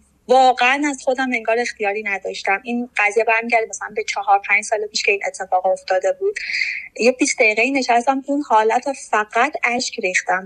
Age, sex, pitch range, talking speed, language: 20-39, female, 210-255 Hz, 165 wpm, Persian